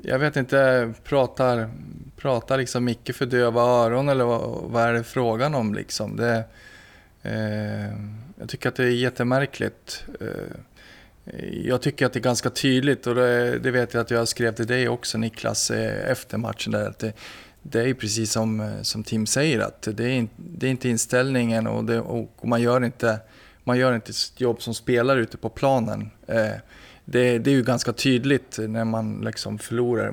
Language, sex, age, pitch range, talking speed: Swedish, male, 20-39, 115-130 Hz, 175 wpm